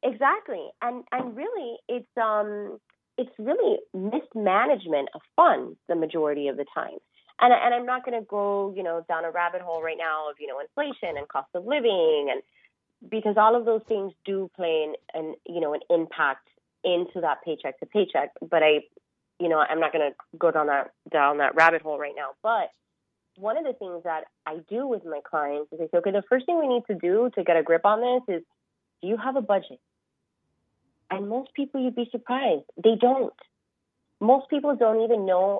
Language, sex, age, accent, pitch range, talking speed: English, female, 30-49, American, 170-245 Hz, 200 wpm